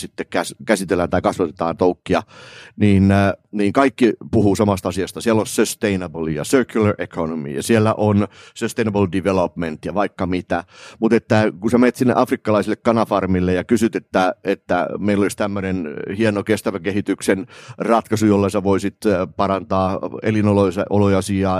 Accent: native